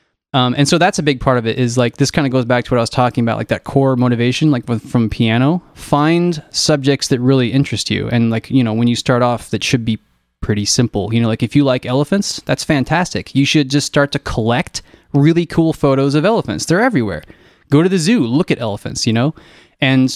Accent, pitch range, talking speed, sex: American, 120-140 Hz, 240 wpm, male